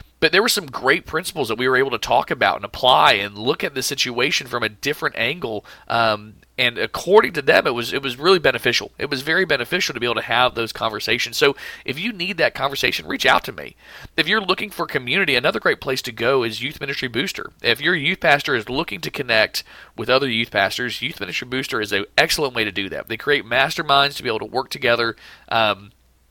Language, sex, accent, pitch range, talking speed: English, male, American, 115-155 Hz, 235 wpm